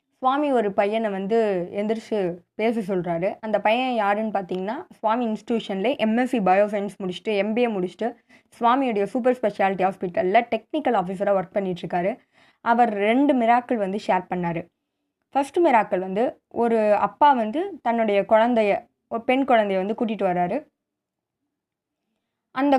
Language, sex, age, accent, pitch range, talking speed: Tamil, female, 20-39, native, 200-260 Hz, 120 wpm